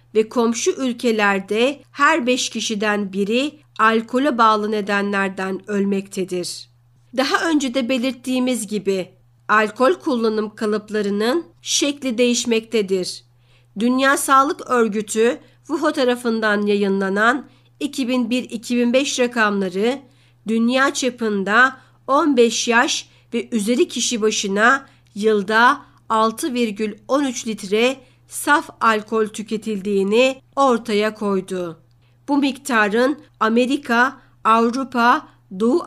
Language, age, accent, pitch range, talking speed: Turkish, 50-69, native, 210-255 Hz, 85 wpm